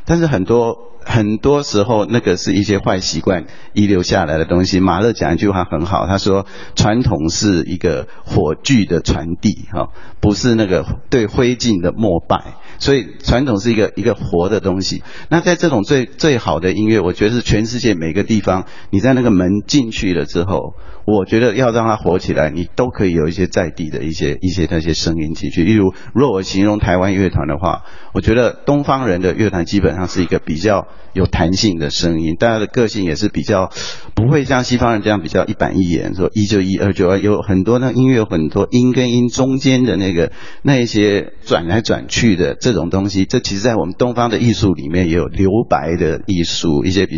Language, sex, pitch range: Chinese, male, 90-120 Hz